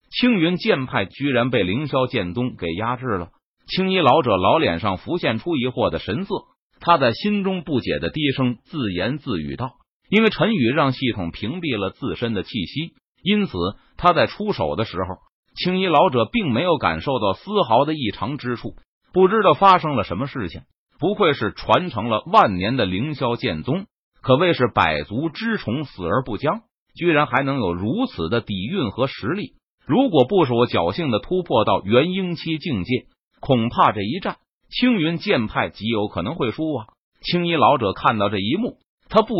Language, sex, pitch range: Chinese, male, 115-180 Hz